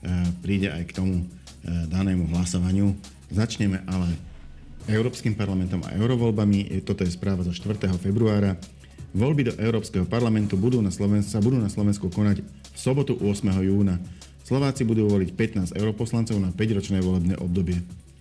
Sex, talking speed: male, 145 wpm